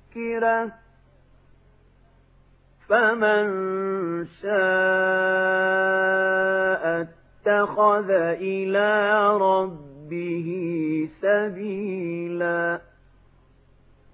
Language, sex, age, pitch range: Arabic, male, 40-59, 180-205 Hz